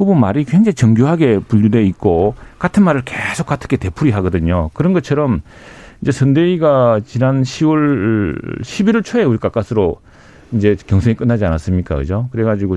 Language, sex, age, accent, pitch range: Korean, male, 40-59, native, 100-135 Hz